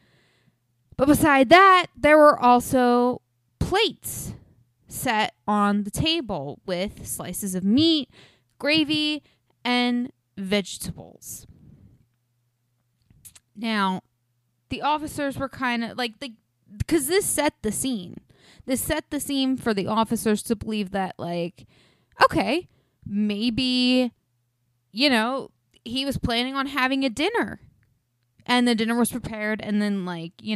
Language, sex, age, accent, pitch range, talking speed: English, female, 20-39, American, 175-260 Hz, 120 wpm